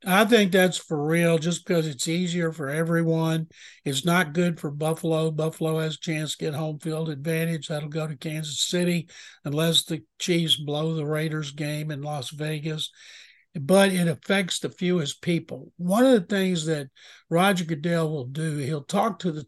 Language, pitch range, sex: English, 155-175 Hz, male